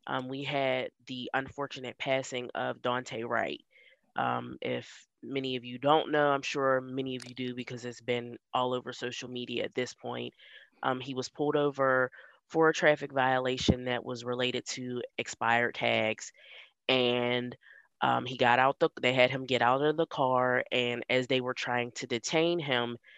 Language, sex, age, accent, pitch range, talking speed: English, female, 20-39, American, 125-140 Hz, 180 wpm